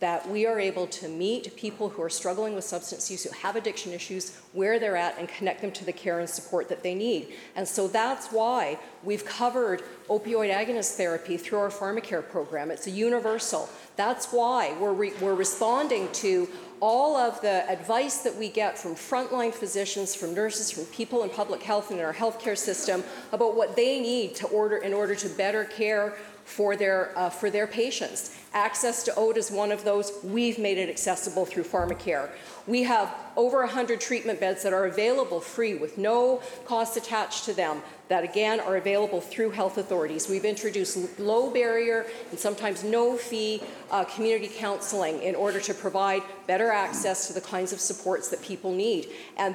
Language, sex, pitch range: English, female, 190-230 Hz